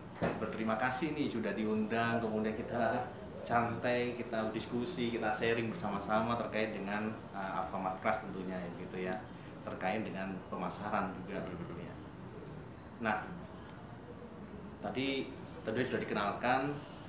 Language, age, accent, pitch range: Indonesian, 30-49, native, 100-120 Hz